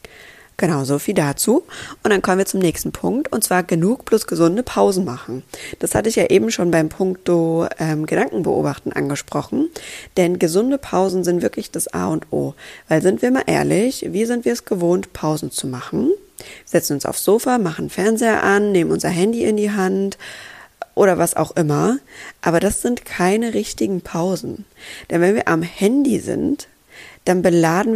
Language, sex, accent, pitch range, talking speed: German, female, German, 165-205 Hz, 180 wpm